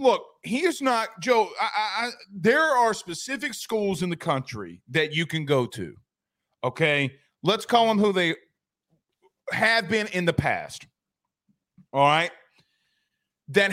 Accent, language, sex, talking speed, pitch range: American, English, male, 135 wpm, 155-200 Hz